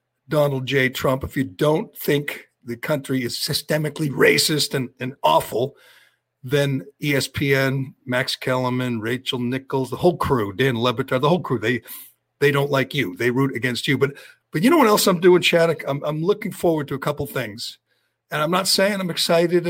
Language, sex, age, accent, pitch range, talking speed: English, male, 50-69, American, 130-170 Hz, 185 wpm